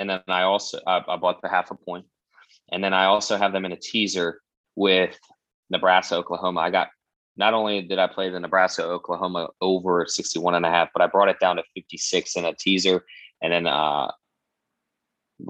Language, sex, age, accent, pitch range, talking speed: English, male, 20-39, American, 85-95 Hz, 195 wpm